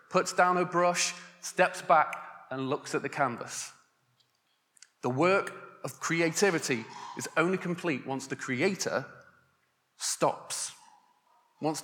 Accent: British